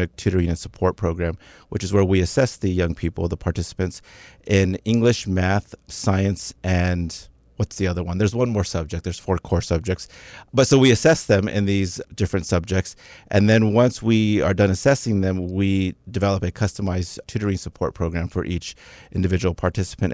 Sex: male